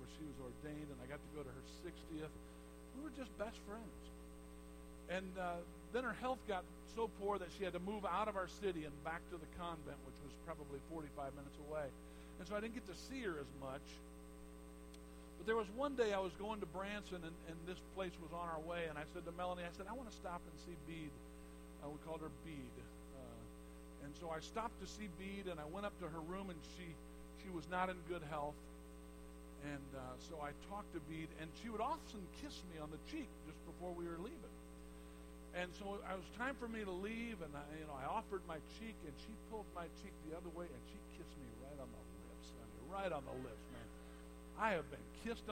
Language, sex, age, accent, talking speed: English, male, 50-69, American, 230 wpm